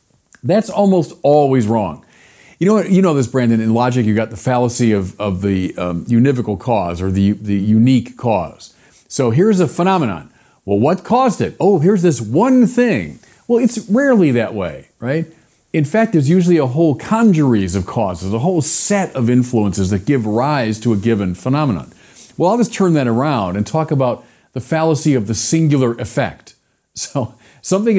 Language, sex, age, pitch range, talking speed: English, male, 40-59, 110-170 Hz, 180 wpm